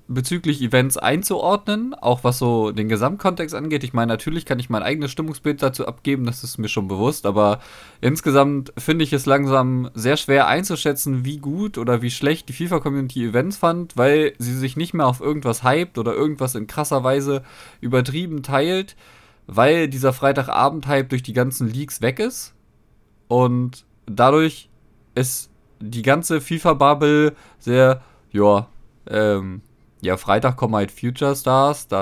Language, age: German, 20-39